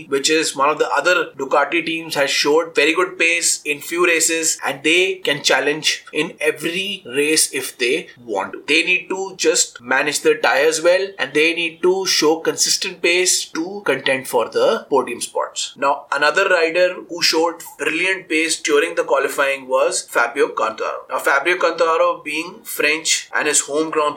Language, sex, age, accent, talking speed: Hindi, male, 30-49, native, 175 wpm